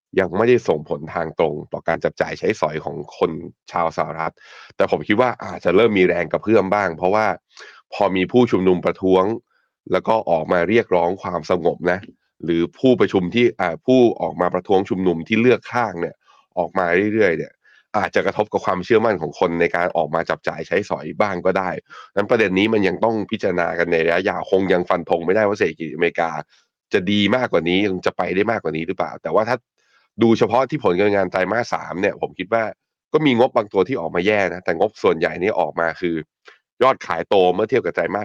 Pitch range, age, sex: 85-105 Hz, 20-39, male